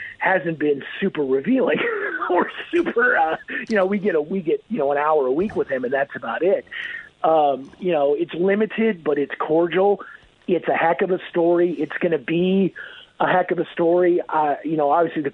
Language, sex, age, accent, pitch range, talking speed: English, male, 40-59, American, 140-200 Hz, 210 wpm